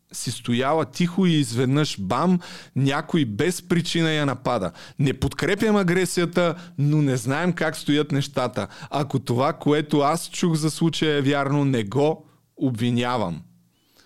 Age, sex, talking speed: 30-49, male, 135 wpm